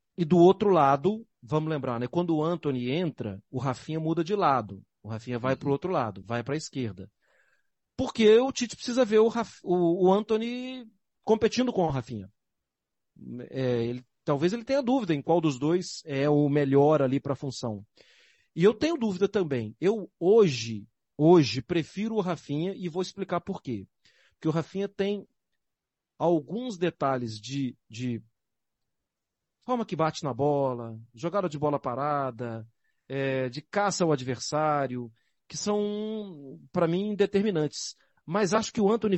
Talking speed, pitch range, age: 160 wpm, 140-210 Hz, 40-59